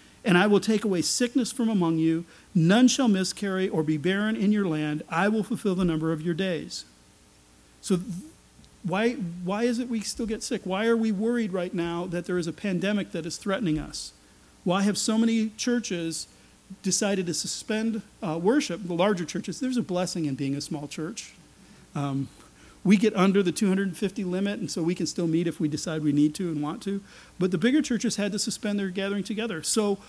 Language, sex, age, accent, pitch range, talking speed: English, male, 40-59, American, 170-220 Hz, 210 wpm